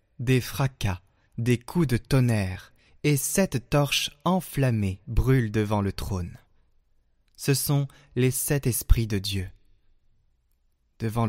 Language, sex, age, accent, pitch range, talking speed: French, male, 20-39, French, 100-135 Hz, 115 wpm